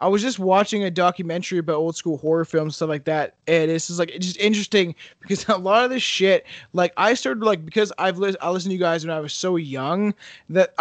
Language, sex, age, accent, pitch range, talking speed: English, male, 20-39, American, 165-200 Hz, 255 wpm